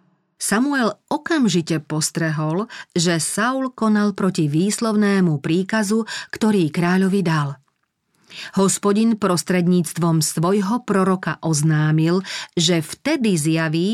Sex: female